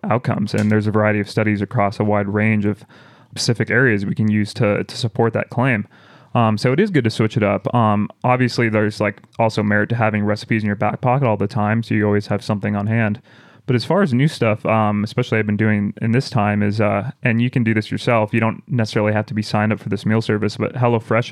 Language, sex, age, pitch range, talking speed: English, male, 20-39, 105-125 Hz, 255 wpm